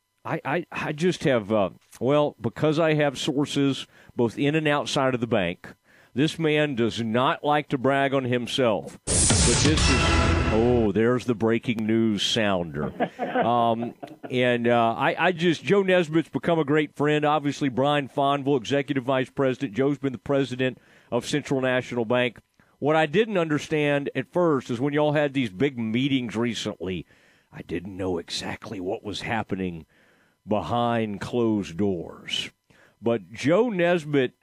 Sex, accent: male, American